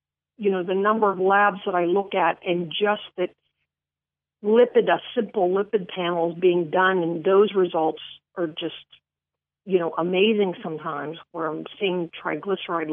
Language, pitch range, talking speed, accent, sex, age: English, 160-210 Hz, 160 wpm, American, female, 50-69